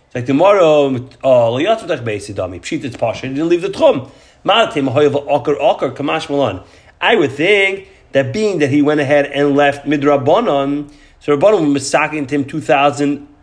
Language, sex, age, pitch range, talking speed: English, male, 40-59, 135-185 Hz, 120 wpm